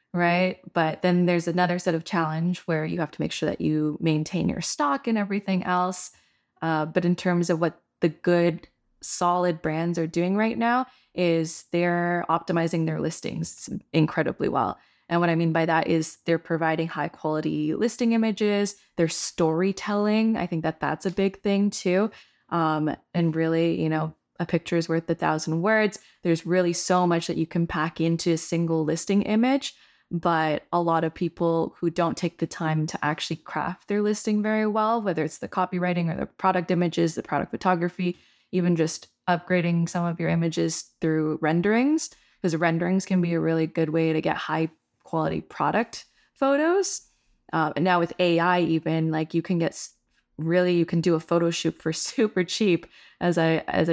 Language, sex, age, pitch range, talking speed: English, female, 20-39, 160-180 Hz, 185 wpm